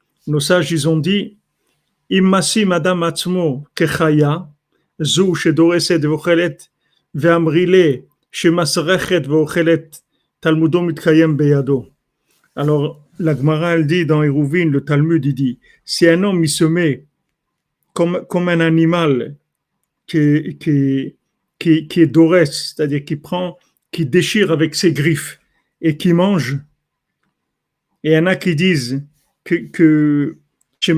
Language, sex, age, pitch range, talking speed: French, male, 50-69, 150-170 Hz, 130 wpm